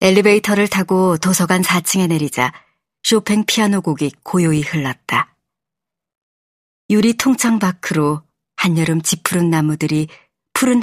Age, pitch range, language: 40-59, 155-215 Hz, Korean